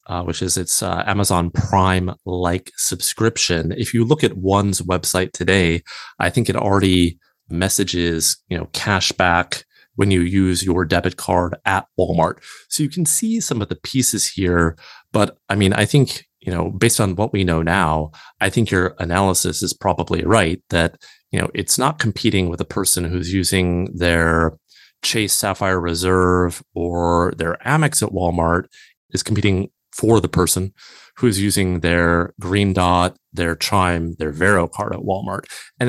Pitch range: 90-105 Hz